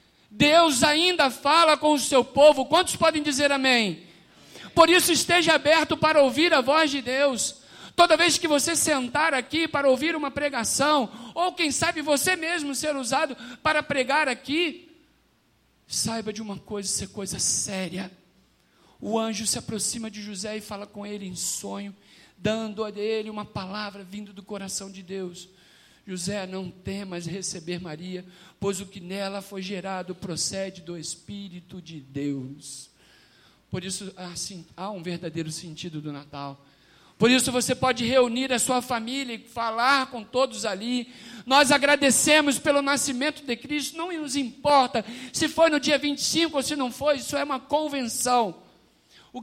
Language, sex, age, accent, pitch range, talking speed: Portuguese, male, 50-69, Brazilian, 195-295 Hz, 160 wpm